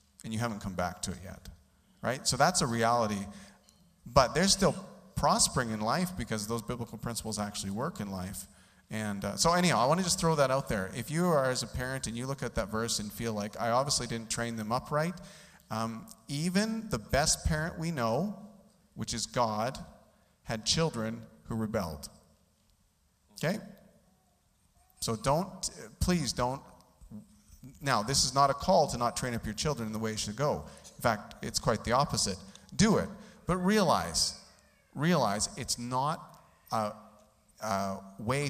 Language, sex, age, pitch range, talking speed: English, male, 40-59, 105-135 Hz, 180 wpm